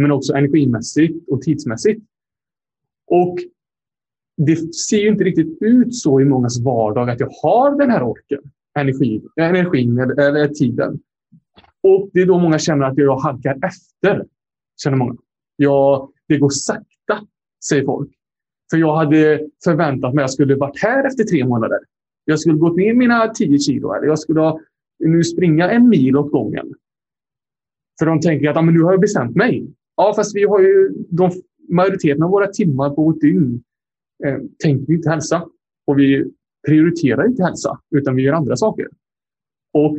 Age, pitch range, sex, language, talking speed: 30-49, 135-170 Hz, male, Swedish, 165 wpm